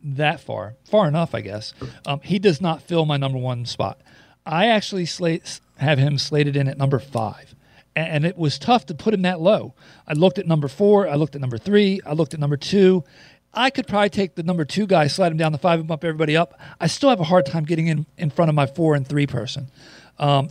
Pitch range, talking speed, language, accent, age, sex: 140-170 Hz, 245 wpm, English, American, 40-59, male